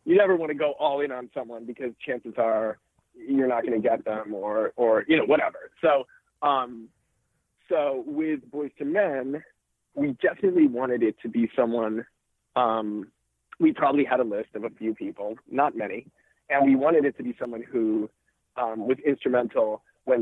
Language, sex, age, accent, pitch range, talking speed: English, male, 30-49, American, 115-150 Hz, 180 wpm